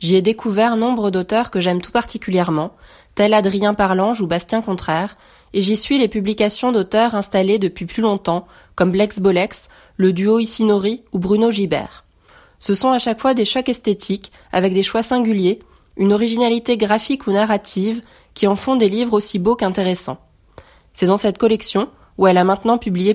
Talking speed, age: 175 wpm, 20-39